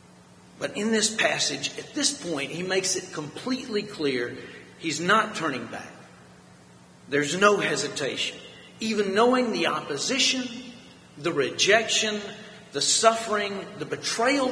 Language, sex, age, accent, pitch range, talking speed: English, male, 40-59, American, 135-205 Hz, 120 wpm